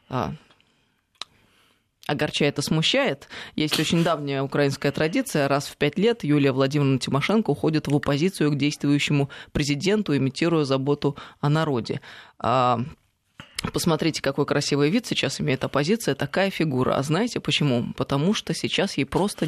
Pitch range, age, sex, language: 135-160 Hz, 20-39, female, Russian